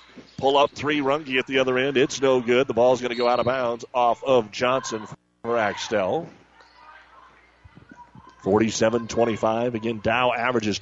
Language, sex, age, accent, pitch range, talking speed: English, male, 40-59, American, 115-130 Hz, 155 wpm